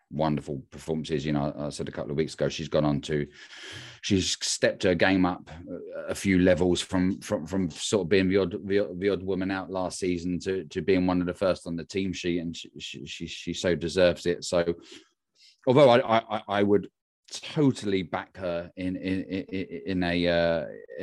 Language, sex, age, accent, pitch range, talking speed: English, male, 30-49, British, 85-105 Hz, 205 wpm